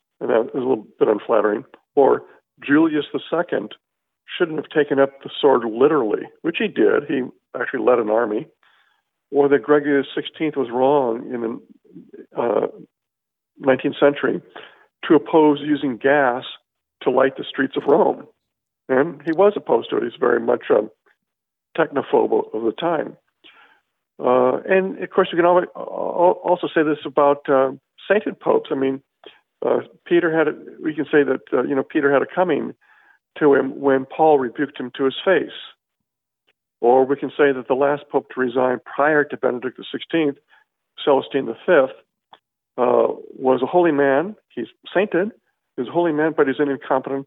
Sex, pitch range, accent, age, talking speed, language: male, 135-195 Hz, American, 50-69, 170 wpm, English